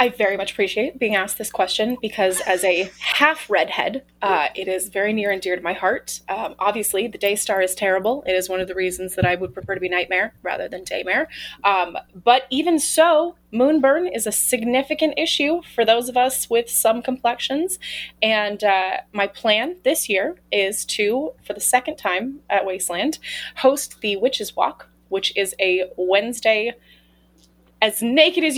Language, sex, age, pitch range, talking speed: English, female, 20-39, 195-275 Hz, 185 wpm